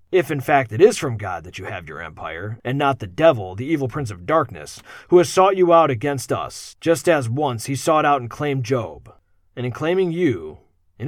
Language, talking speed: English, 225 wpm